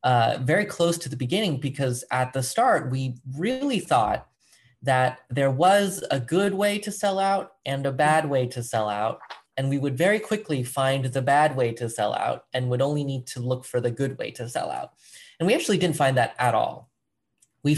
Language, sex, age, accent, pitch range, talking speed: English, male, 20-39, American, 120-145 Hz, 215 wpm